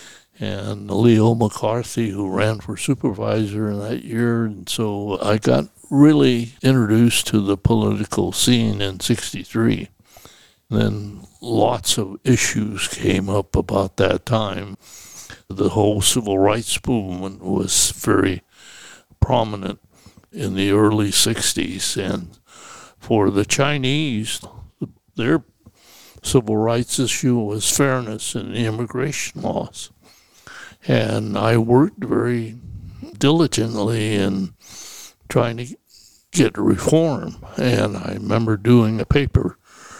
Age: 60-79